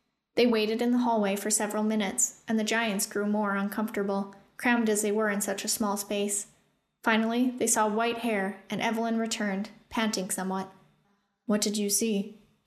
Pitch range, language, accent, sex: 210-285 Hz, English, American, female